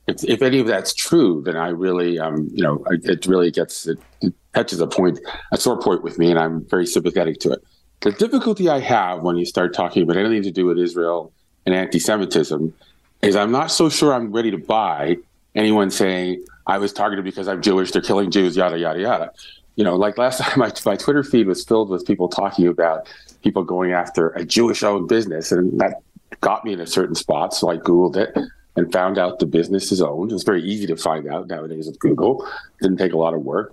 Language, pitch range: English, 85-110 Hz